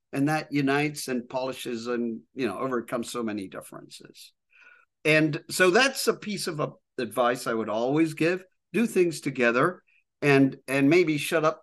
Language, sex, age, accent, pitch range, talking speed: English, male, 50-69, American, 125-175 Hz, 160 wpm